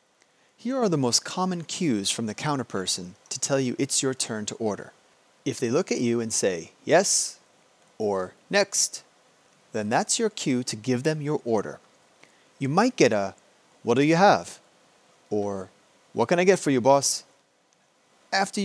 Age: 30-49